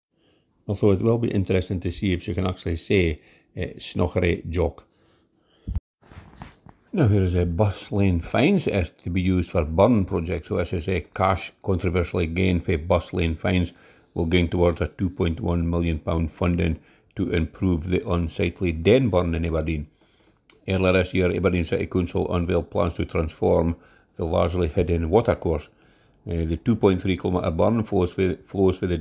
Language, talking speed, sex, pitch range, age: English, 155 wpm, male, 85-95 Hz, 50-69